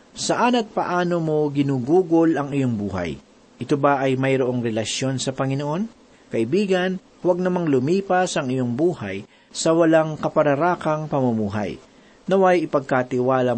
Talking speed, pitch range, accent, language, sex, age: 125 wpm, 135-185 Hz, native, Filipino, male, 50-69